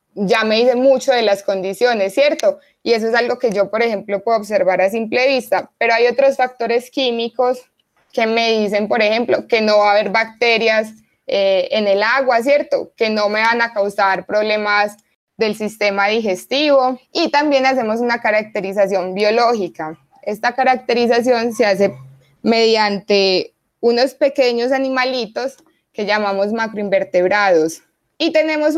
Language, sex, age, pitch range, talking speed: Spanish, female, 20-39, 205-255 Hz, 150 wpm